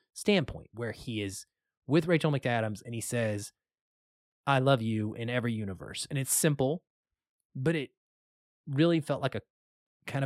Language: English